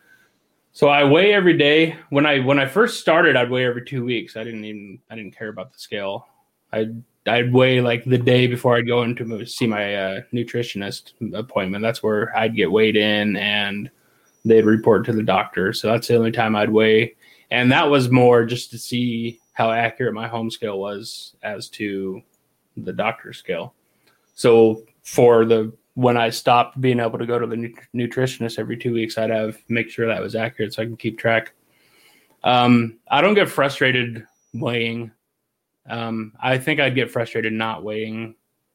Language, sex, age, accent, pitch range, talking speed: English, male, 20-39, American, 115-130 Hz, 185 wpm